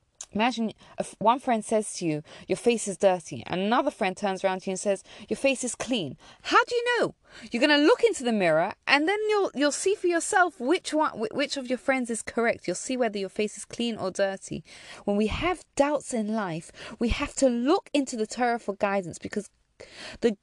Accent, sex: British, female